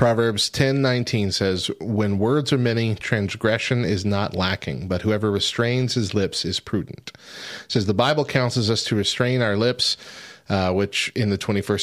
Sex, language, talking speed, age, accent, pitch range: male, English, 170 wpm, 30-49, American, 100-120 Hz